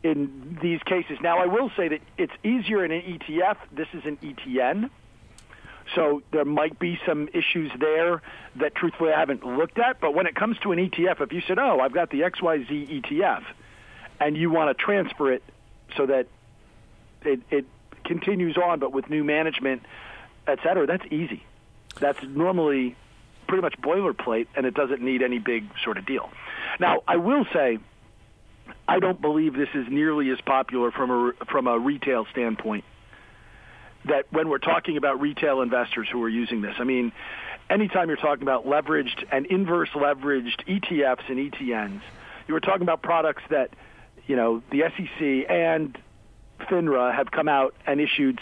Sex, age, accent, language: male, 50-69, American, English